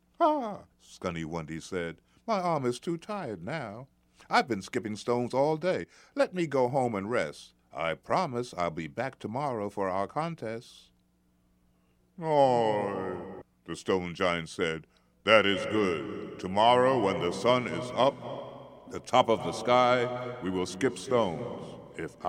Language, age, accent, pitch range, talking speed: English, 60-79, American, 85-125 Hz, 150 wpm